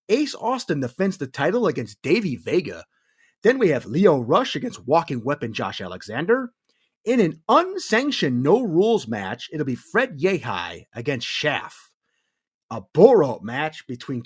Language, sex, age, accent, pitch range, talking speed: English, male, 30-49, American, 140-220 Hz, 145 wpm